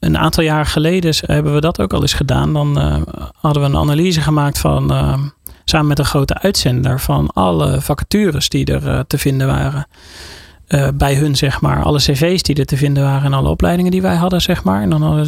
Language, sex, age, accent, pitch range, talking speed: Dutch, male, 30-49, Dutch, 125-155 Hz, 230 wpm